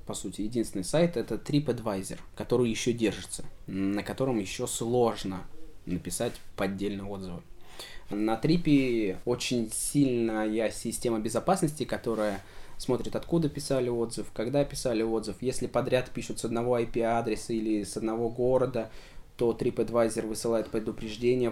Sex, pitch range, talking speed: male, 110-135 Hz, 125 wpm